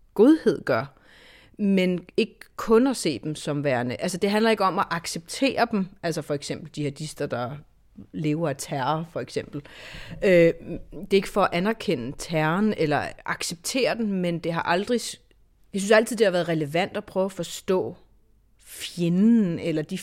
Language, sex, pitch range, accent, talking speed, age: Danish, female, 155-200 Hz, native, 175 wpm, 30-49